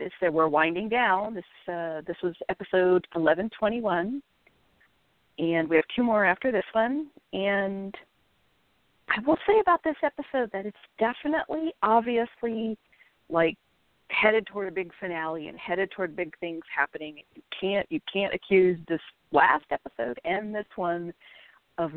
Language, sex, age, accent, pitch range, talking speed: English, female, 50-69, American, 160-225 Hz, 150 wpm